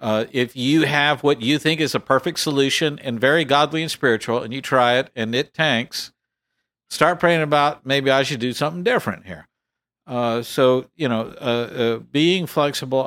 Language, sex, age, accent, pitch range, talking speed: English, male, 50-69, American, 115-140 Hz, 190 wpm